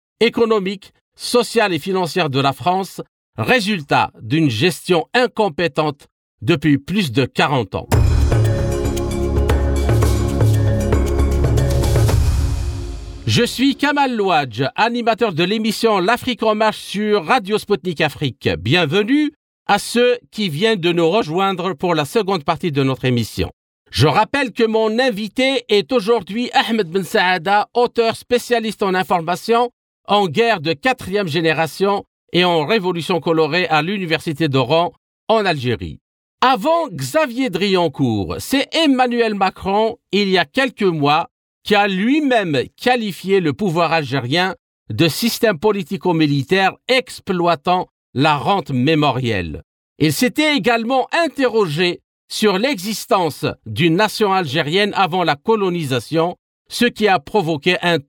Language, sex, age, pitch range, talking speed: French, male, 50-69, 155-225 Hz, 120 wpm